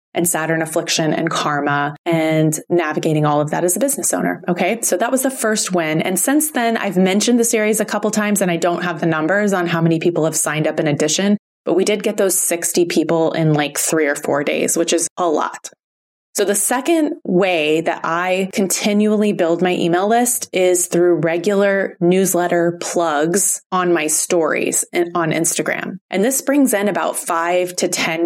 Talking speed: 195 wpm